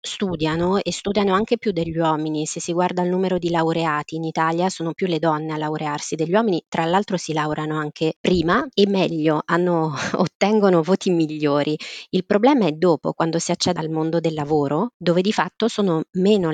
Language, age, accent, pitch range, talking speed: Italian, 20-39, native, 155-180 Hz, 185 wpm